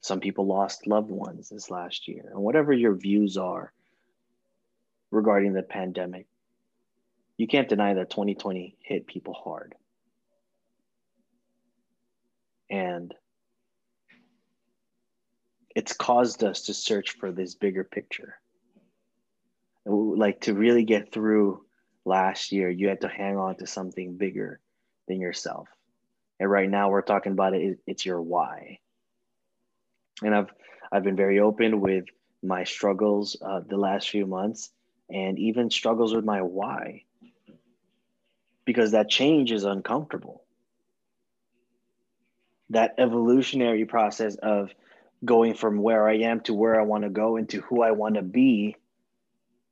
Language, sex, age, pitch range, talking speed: English, male, 20-39, 100-120 Hz, 130 wpm